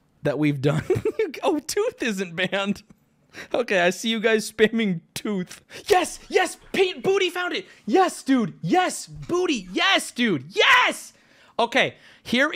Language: English